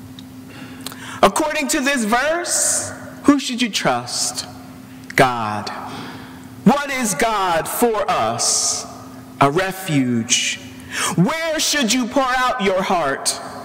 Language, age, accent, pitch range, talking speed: English, 50-69, American, 180-265 Hz, 100 wpm